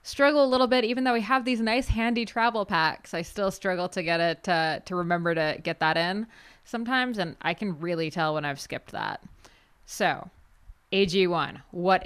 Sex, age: female, 20-39